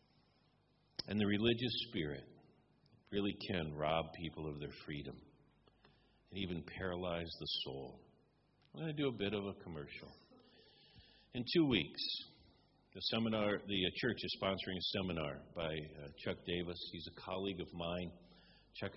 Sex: male